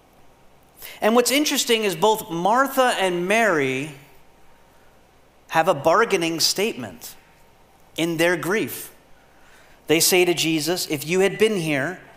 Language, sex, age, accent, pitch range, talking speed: English, male, 30-49, American, 165-210 Hz, 120 wpm